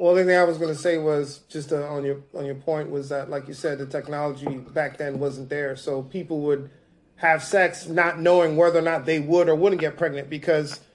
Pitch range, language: 155-180 Hz, English